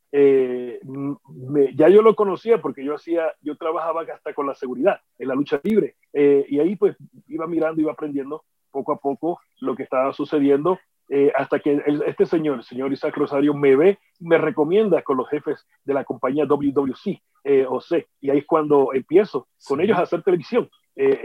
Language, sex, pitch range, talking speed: Spanish, male, 140-165 Hz, 190 wpm